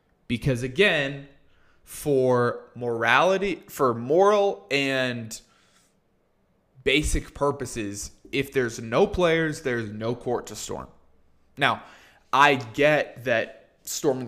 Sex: male